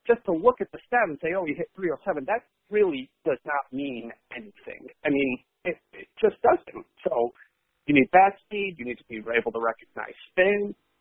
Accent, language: American, English